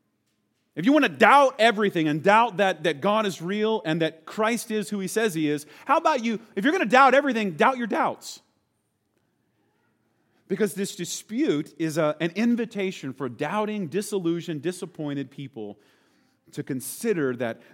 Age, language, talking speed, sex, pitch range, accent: 40-59, English, 160 wpm, male, 150-210 Hz, American